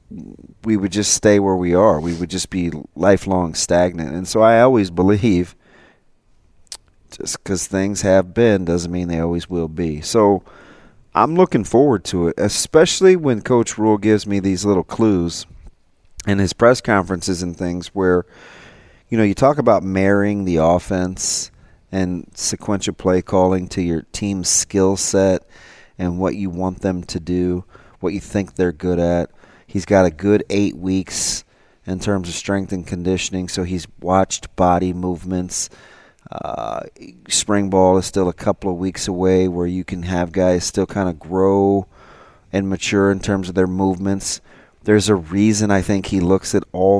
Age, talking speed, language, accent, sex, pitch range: 40-59, 170 wpm, English, American, male, 90-100 Hz